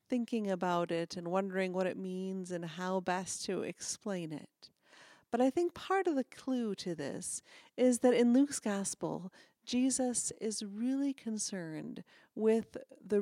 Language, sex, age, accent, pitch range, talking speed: English, female, 40-59, American, 195-250 Hz, 155 wpm